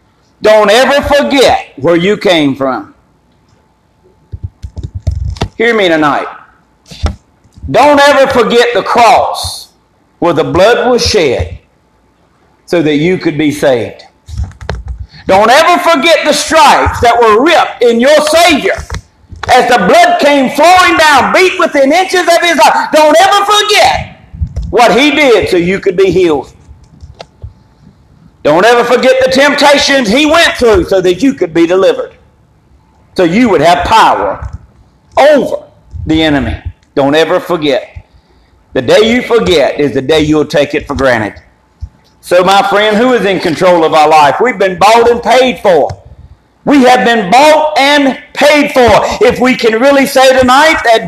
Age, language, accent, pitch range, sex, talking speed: 50-69, English, American, 180-295 Hz, male, 150 wpm